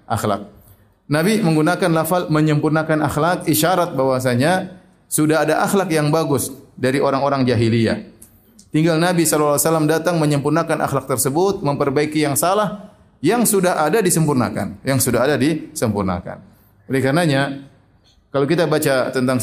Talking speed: 125 wpm